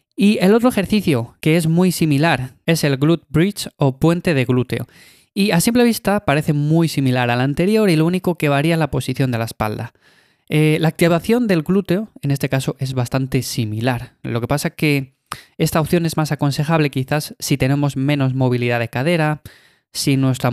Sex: male